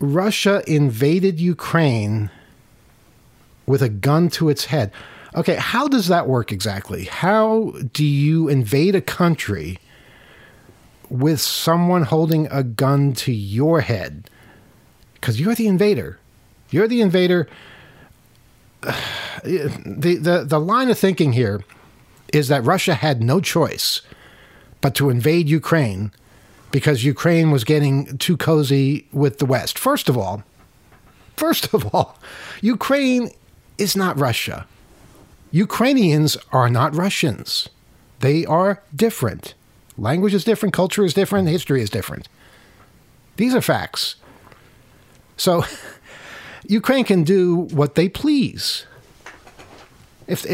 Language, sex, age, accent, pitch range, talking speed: English, male, 50-69, American, 135-195 Hz, 120 wpm